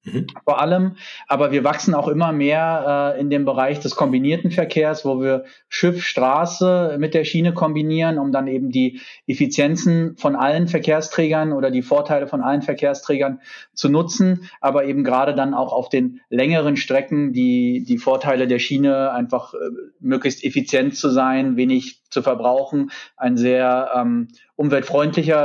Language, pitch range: German, 130-160 Hz